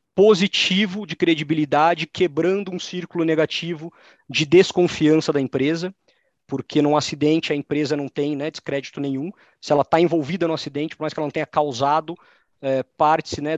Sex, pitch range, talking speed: male, 140-170 Hz, 160 wpm